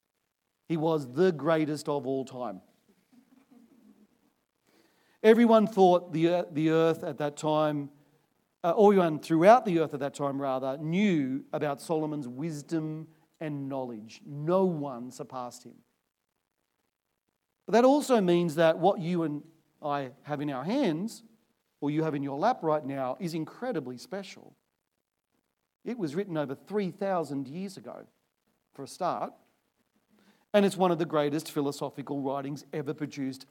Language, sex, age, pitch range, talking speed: English, male, 40-59, 145-195 Hz, 140 wpm